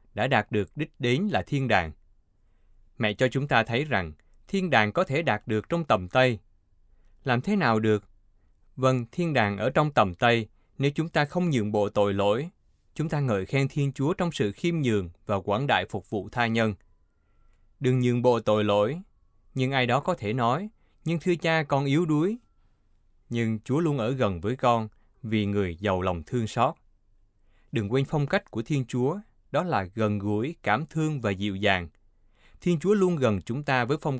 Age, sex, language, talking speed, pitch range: 20-39, male, Vietnamese, 200 wpm, 100-135 Hz